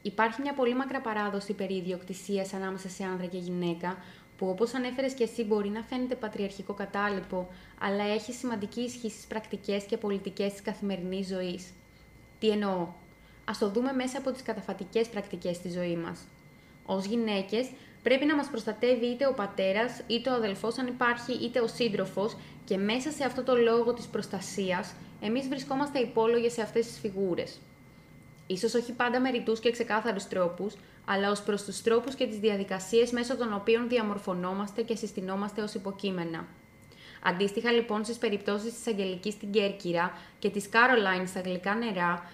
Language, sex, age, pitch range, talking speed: Greek, female, 20-39, 195-235 Hz, 165 wpm